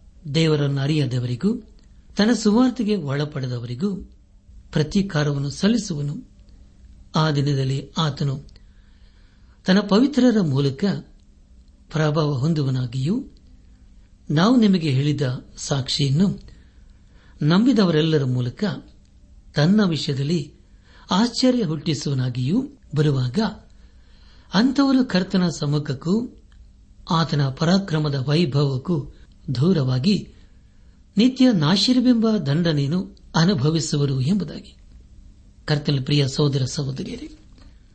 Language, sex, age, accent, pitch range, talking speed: Kannada, male, 60-79, native, 130-190 Hz, 65 wpm